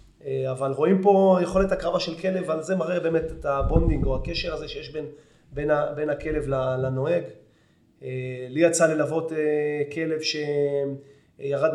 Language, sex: Hebrew, male